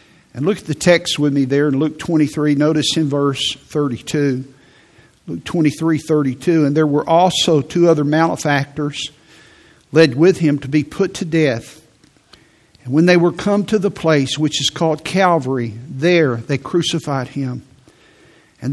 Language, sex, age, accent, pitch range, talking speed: English, male, 50-69, American, 135-160 Hz, 165 wpm